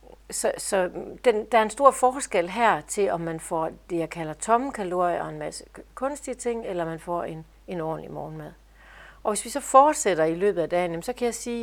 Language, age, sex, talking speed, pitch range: Danish, 60-79, female, 220 wpm, 170-220 Hz